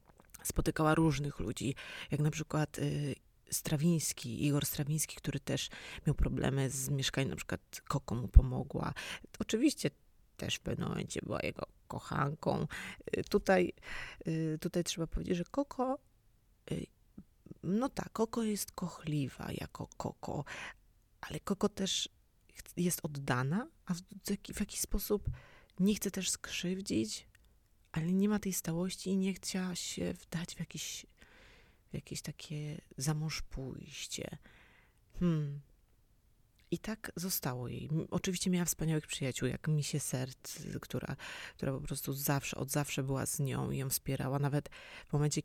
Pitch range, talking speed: 135-180 Hz, 130 wpm